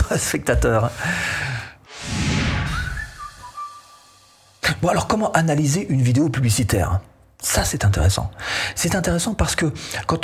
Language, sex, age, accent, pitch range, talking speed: French, male, 40-59, French, 105-160 Hz, 95 wpm